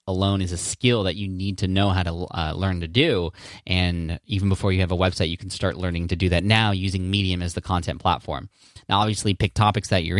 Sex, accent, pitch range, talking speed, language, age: male, American, 90-110 Hz, 245 wpm, English, 20-39